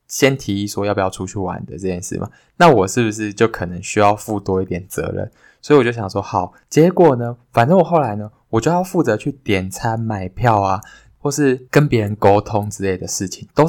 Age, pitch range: 20-39, 100-130 Hz